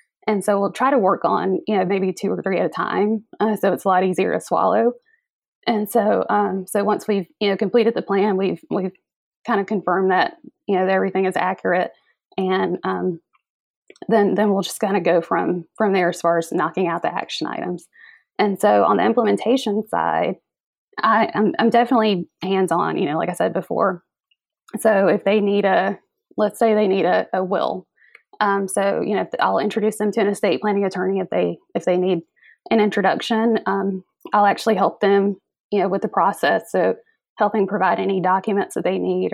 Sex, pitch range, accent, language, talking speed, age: female, 190-215 Hz, American, English, 205 wpm, 20-39